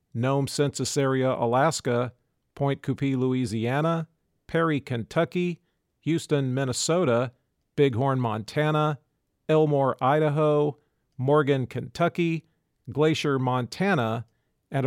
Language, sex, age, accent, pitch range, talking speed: English, male, 40-59, American, 125-150 Hz, 75 wpm